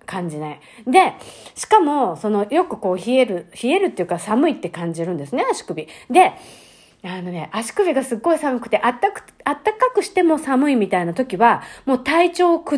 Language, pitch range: Japanese, 195-290 Hz